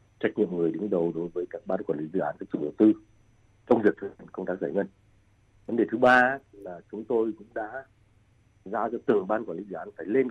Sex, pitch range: male, 100-115 Hz